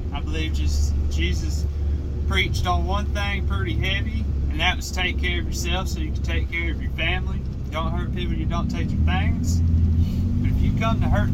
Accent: American